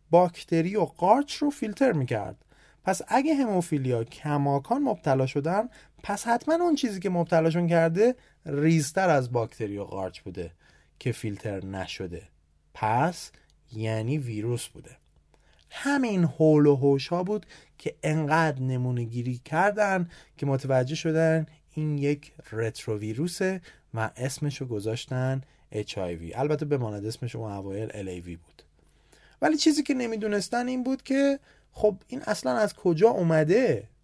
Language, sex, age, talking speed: Persian, male, 30-49, 125 wpm